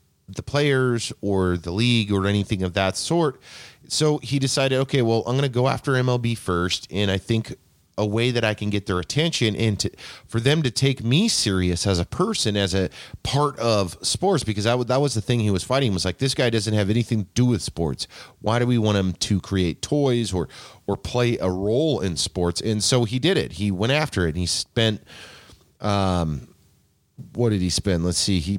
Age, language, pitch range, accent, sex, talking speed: 30-49, English, 95-120 Hz, American, male, 220 wpm